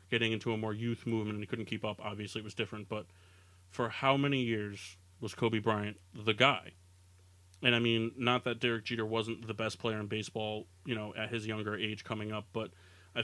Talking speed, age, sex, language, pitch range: 220 wpm, 30-49, male, English, 100-120 Hz